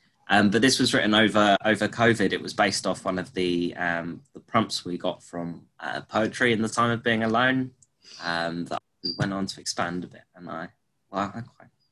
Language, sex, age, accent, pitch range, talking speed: English, male, 20-39, British, 90-110 Hz, 215 wpm